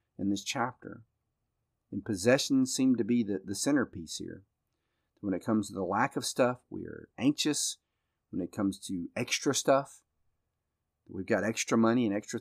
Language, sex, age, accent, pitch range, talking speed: English, male, 40-59, American, 95-120 Hz, 170 wpm